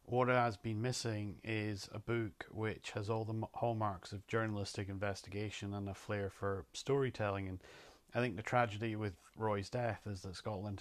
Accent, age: British, 40-59